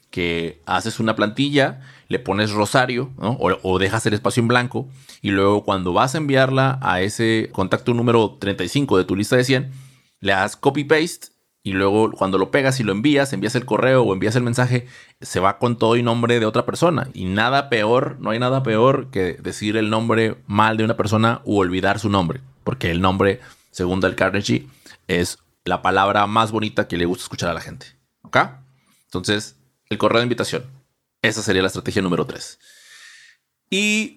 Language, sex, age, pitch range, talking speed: Spanish, male, 30-49, 95-130 Hz, 190 wpm